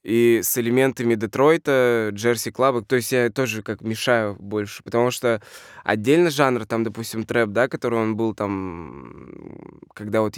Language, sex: Russian, male